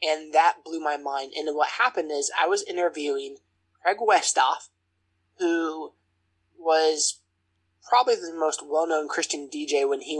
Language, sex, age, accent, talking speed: English, male, 20-39, American, 140 wpm